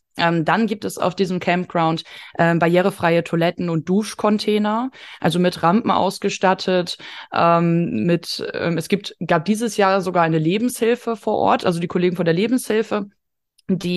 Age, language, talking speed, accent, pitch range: 20-39, German, 155 wpm, German, 170-200 Hz